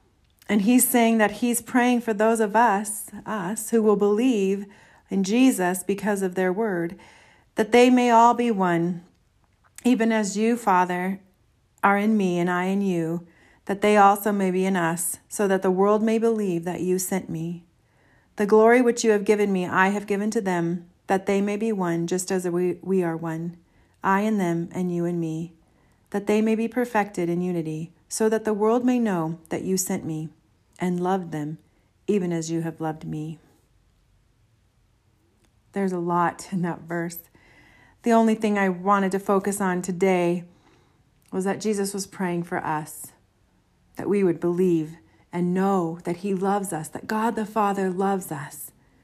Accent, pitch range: American, 165-205 Hz